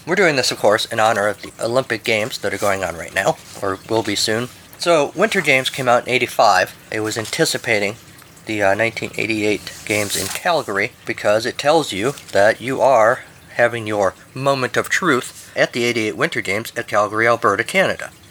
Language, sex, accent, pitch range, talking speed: English, male, American, 110-140 Hz, 190 wpm